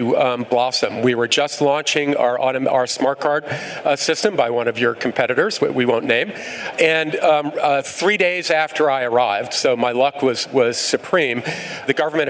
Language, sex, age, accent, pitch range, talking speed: English, male, 40-59, American, 130-155 Hz, 180 wpm